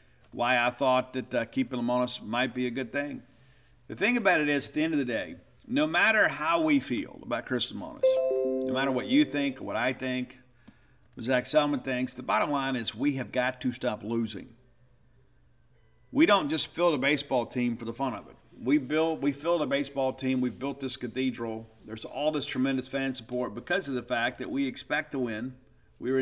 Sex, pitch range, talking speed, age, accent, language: male, 120-145 Hz, 215 wpm, 50-69, American, English